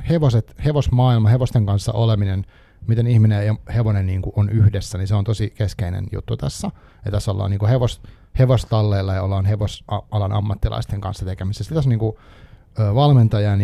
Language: Finnish